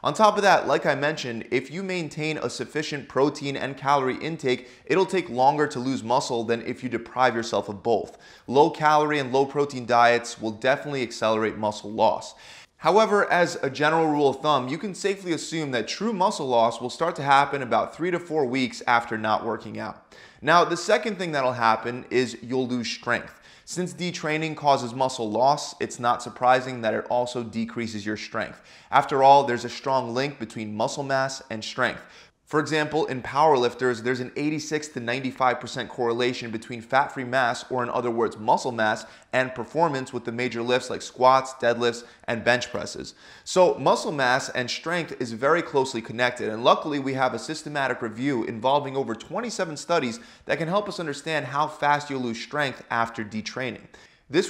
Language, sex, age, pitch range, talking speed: English, male, 20-39, 120-150 Hz, 185 wpm